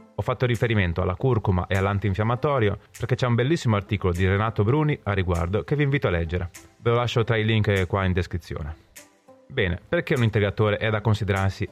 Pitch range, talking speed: 95-130 Hz, 195 wpm